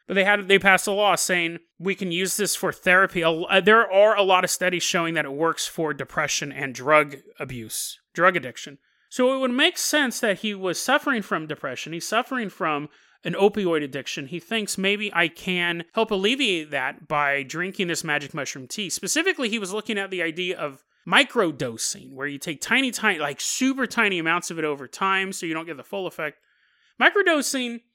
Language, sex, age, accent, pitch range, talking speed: English, male, 30-49, American, 155-215 Hz, 195 wpm